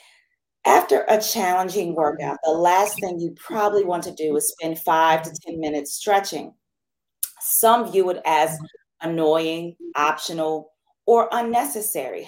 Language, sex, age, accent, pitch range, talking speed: English, female, 30-49, American, 160-205 Hz, 130 wpm